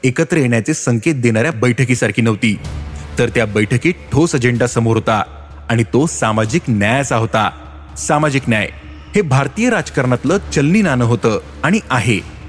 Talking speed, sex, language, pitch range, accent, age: 105 wpm, male, Marathi, 115-145 Hz, native, 30-49